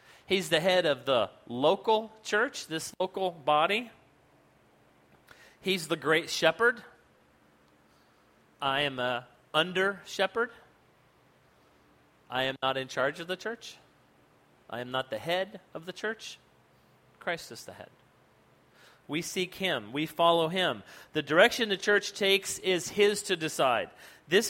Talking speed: 130 wpm